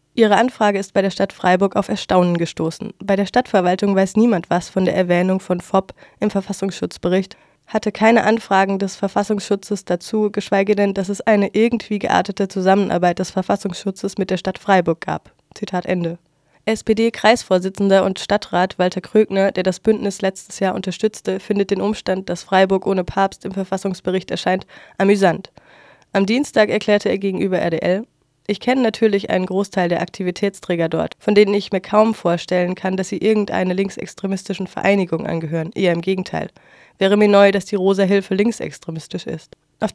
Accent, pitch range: German, 185-210 Hz